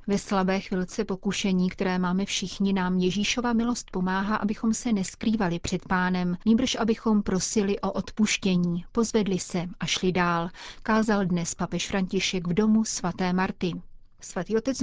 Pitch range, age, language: 185-220 Hz, 30-49, Czech